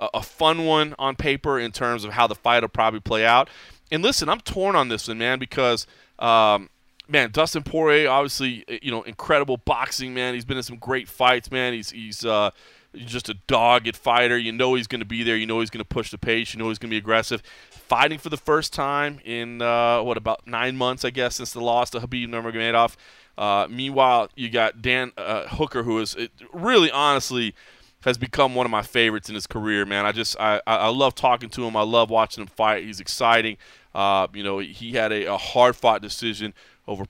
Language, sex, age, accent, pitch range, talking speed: English, male, 30-49, American, 110-125 Hz, 220 wpm